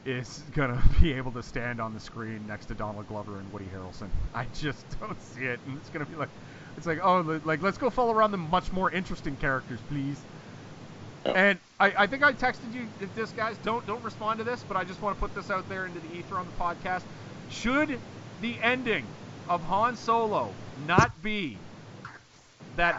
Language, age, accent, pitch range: English, 30-49, American, 145-200 Hz